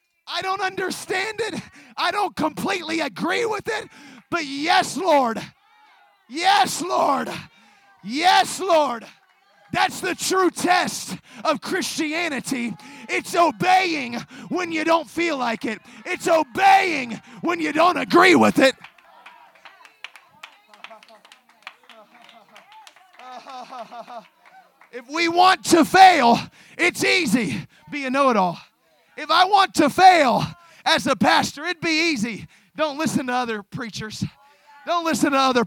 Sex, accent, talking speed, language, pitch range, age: male, American, 115 wpm, English, 245-345 Hz, 30-49